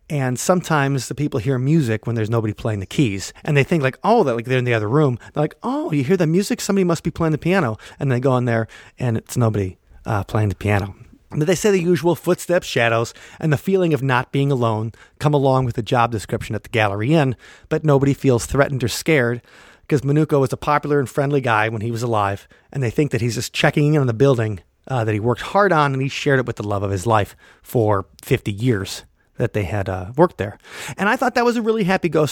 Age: 30-49